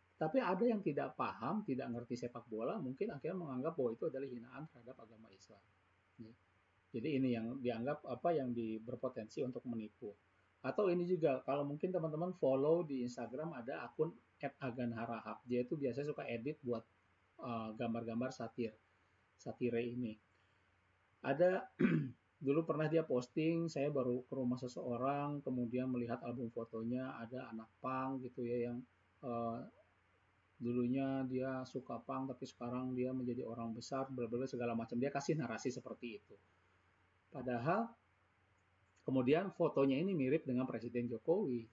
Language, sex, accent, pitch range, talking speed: Indonesian, male, native, 115-135 Hz, 140 wpm